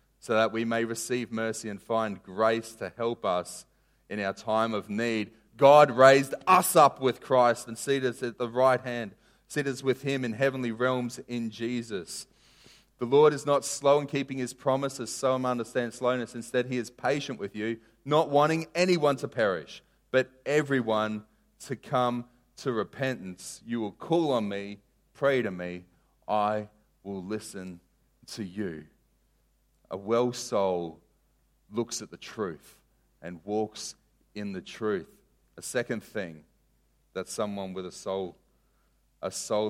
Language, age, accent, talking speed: English, 30-49, Australian, 155 wpm